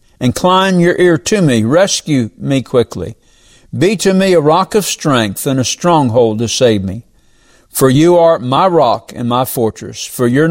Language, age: English, 50-69